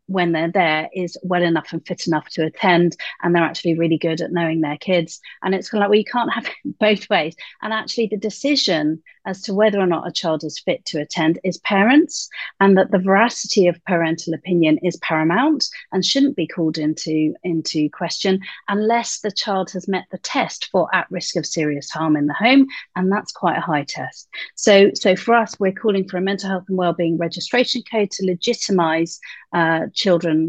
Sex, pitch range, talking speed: female, 165-210 Hz, 200 wpm